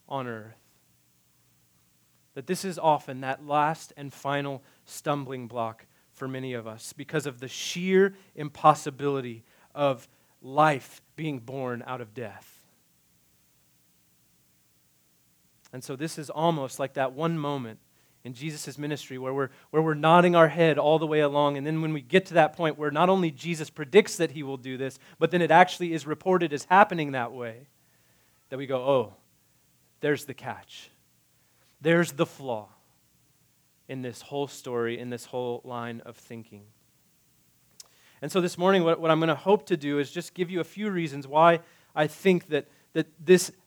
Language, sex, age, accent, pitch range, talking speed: English, male, 30-49, American, 130-175 Hz, 170 wpm